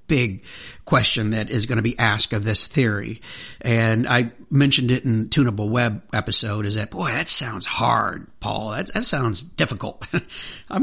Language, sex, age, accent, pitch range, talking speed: English, male, 50-69, American, 125-180 Hz, 170 wpm